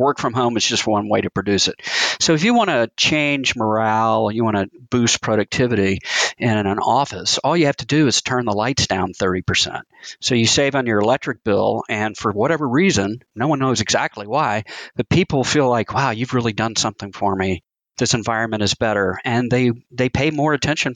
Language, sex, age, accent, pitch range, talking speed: English, male, 40-59, American, 115-145 Hz, 210 wpm